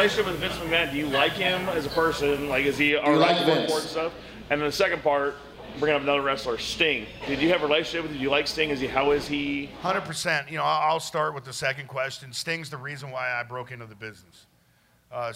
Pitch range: 130-155 Hz